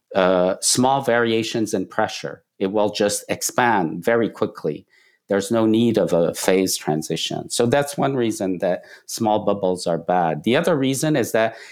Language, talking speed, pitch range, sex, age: English, 165 wpm, 110-145 Hz, male, 50-69